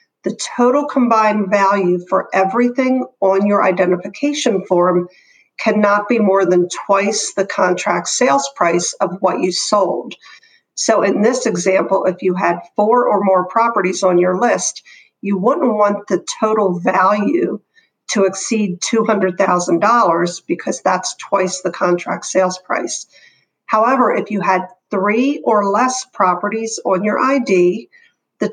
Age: 50-69